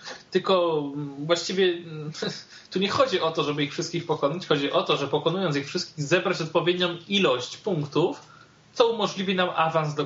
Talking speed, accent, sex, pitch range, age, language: 160 wpm, native, male, 150-190 Hz, 20-39, Polish